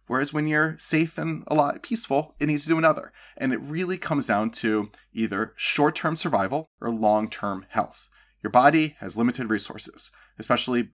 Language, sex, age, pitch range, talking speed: English, male, 30-49, 105-145 Hz, 170 wpm